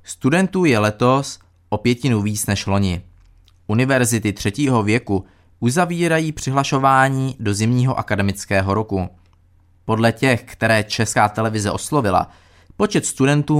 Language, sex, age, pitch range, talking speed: Czech, male, 20-39, 100-130 Hz, 110 wpm